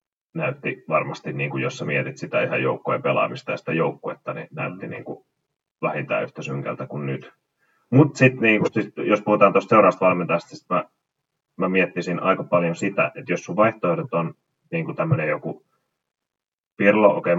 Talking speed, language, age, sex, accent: 160 wpm, Finnish, 30-49, male, native